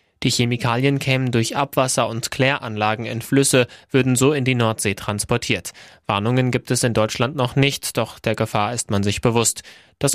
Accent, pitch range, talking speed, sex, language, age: German, 110-130 Hz, 175 wpm, male, German, 20-39